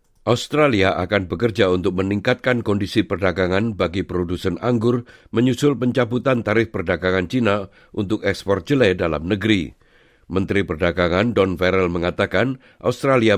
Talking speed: 115 wpm